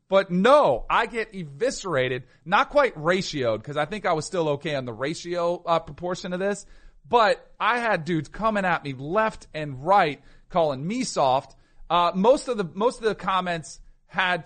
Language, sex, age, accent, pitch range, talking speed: English, male, 40-59, American, 170-220 Hz, 185 wpm